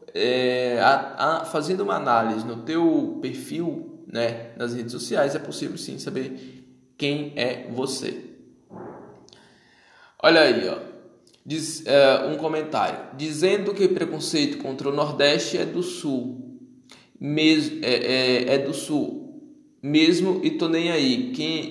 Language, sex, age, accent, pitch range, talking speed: Portuguese, male, 20-39, Brazilian, 125-160 Hz, 135 wpm